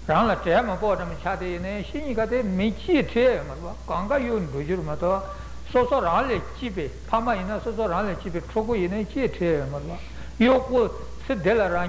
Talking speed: 130 wpm